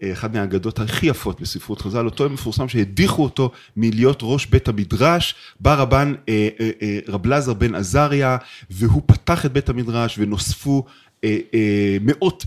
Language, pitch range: Hebrew, 115-150 Hz